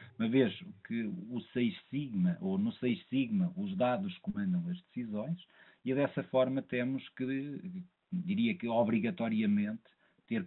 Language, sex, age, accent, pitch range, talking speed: English, male, 50-69, Portuguese, 175-210 Hz, 130 wpm